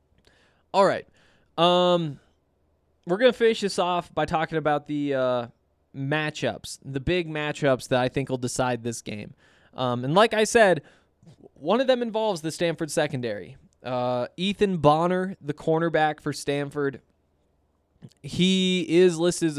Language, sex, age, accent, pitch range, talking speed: English, male, 20-39, American, 125-165 Hz, 145 wpm